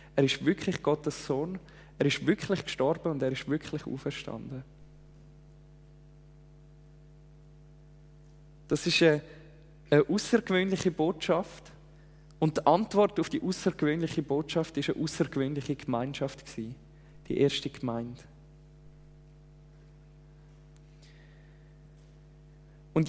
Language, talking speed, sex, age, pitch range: German, 95 wpm, male, 20-39, 150-165 Hz